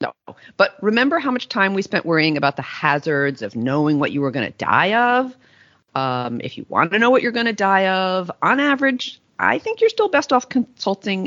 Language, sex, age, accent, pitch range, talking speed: English, female, 40-59, American, 135-195 Hz, 225 wpm